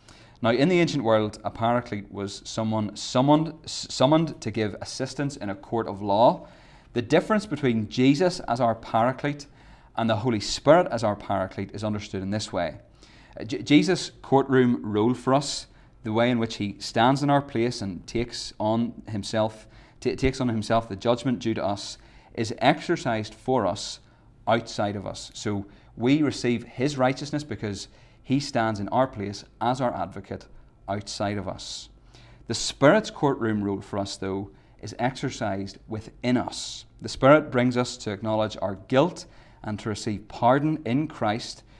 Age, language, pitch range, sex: 30-49, English, 105-130 Hz, male